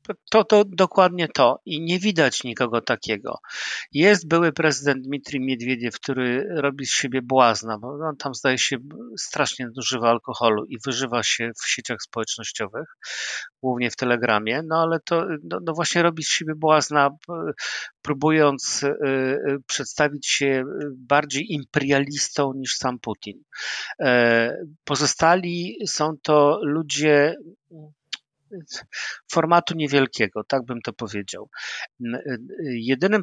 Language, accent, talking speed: Polish, native, 115 wpm